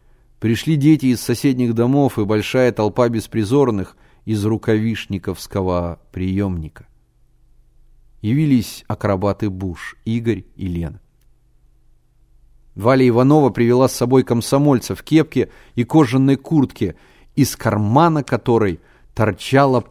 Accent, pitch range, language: native, 100-130 Hz, Russian